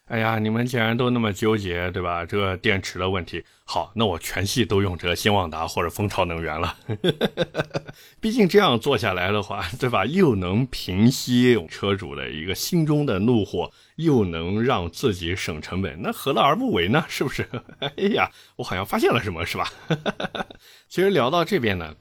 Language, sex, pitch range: Chinese, male, 85-120 Hz